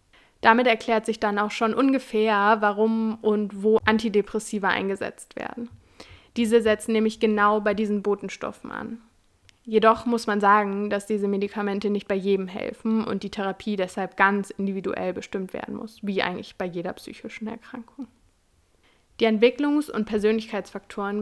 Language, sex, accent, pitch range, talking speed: German, female, German, 200-230 Hz, 145 wpm